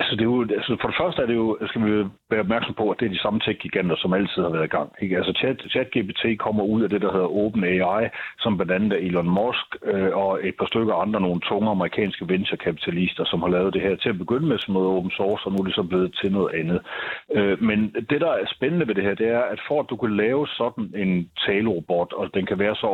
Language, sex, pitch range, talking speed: Danish, male, 95-115 Hz, 265 wpm